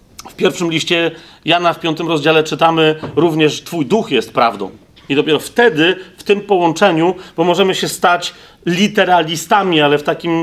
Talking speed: 155 wpm